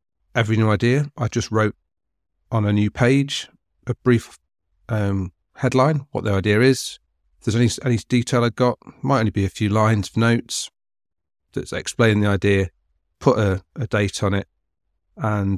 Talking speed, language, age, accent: 170 wpm, English, 40-59, British